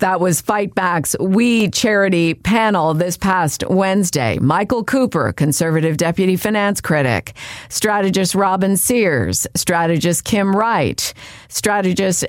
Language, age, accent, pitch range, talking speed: English, 50-69, American, 155-200 Hz, 110 wpm